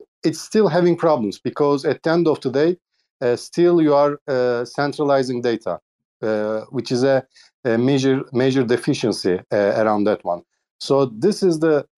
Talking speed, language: 165 wpm, English